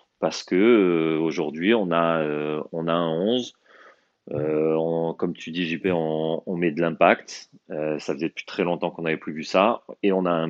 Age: 30-49